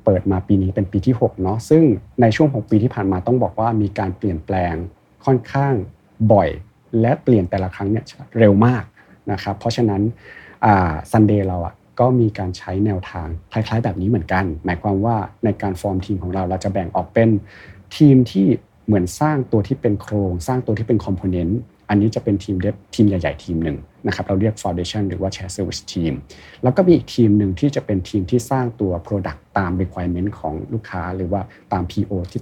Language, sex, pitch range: Thai, male, 95-120 Hz